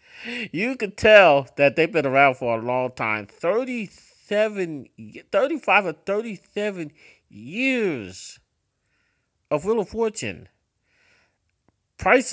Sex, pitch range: male, 125-195 Hz